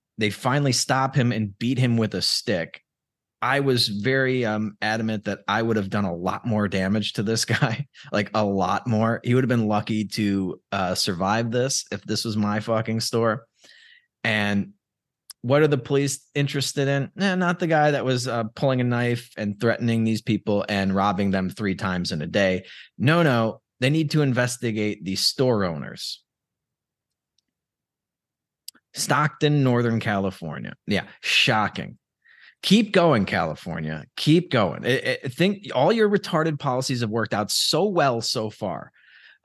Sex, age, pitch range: male, 20-39, 105-140 Hz